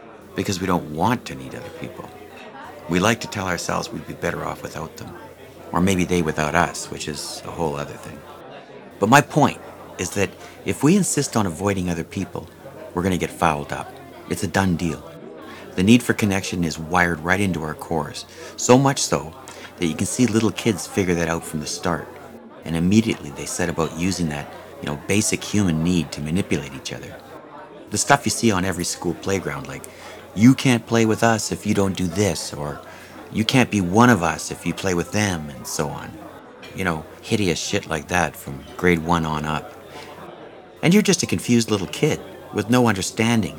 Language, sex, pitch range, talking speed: English, male, 85-110 Hz, 200 wpm